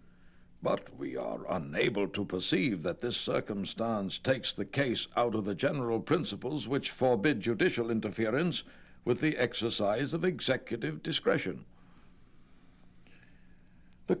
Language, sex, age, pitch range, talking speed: English, male, 60-79, 85-135 Hz, 120 wpm